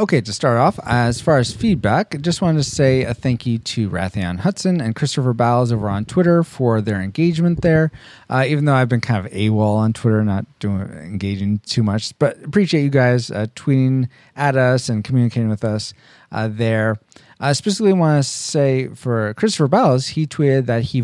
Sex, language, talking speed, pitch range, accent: male, English, 200 wpm, 110-150 Hz, American